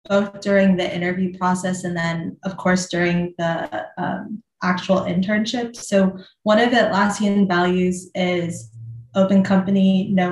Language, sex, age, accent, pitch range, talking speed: English, female, 20-39, American, 180-200 Hz, 140 wpm